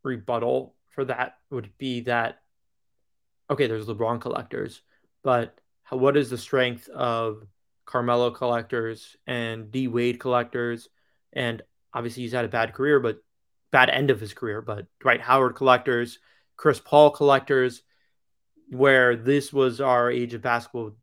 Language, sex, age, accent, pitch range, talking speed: English, male, 30-49, American, 120-140 Hz, 140 wpm